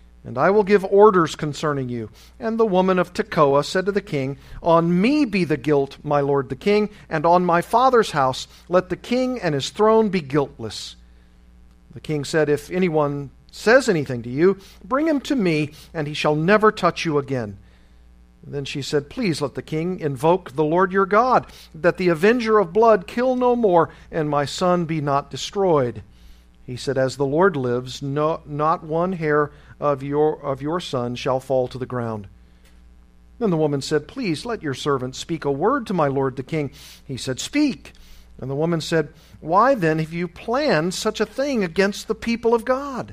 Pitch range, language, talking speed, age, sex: 135-200 Hz, English, 200 wpm, 50-69, male